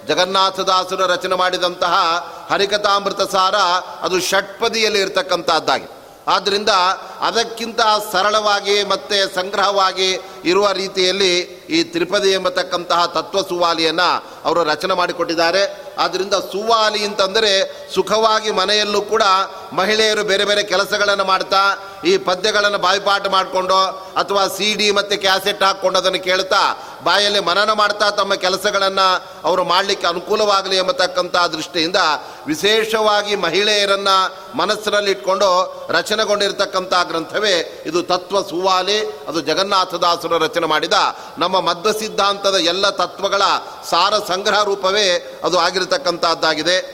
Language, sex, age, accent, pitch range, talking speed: Kannada, male, 40-59, native, 185-205 Hz, 100 wpm